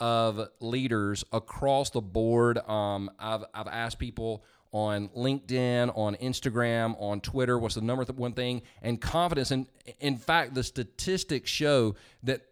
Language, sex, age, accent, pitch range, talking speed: English, male, 40-59, American, 110-135 Hz, 155 wpm